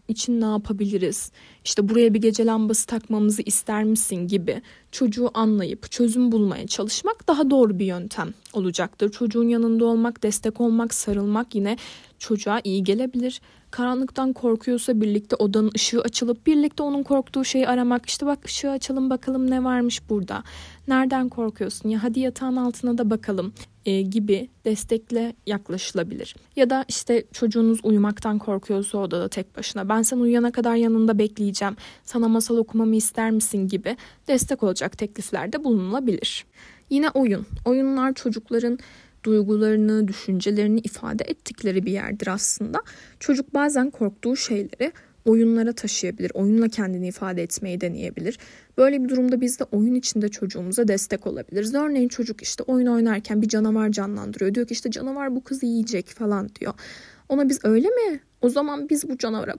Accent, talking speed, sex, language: native, 145 wpm, female, Turkish